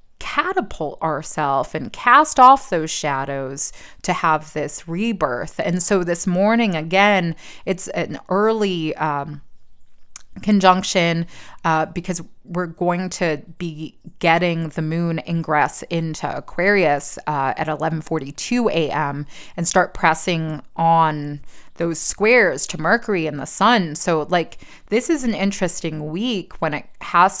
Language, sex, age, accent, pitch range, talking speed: English, female, 20-39, American, 155-185 Hz, 125 wpm